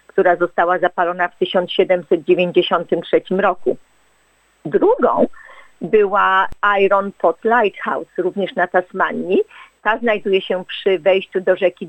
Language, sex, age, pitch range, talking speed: Polish, female, 40-59, 180-220 Hz, 105 wpm